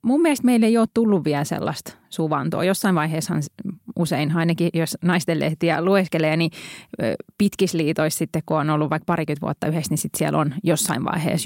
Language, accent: Finnish, native